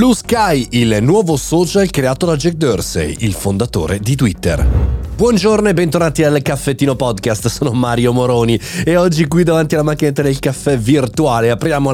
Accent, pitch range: native, 110-145 Hz